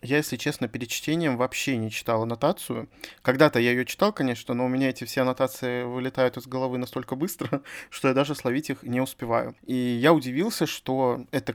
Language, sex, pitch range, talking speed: Russian, male, 120-145 Hz, 190 wpm